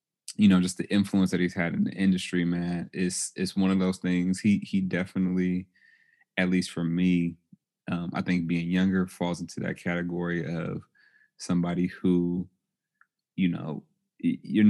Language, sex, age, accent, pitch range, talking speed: English, male, 30-49, American, 90-95 Hz, 165 wpm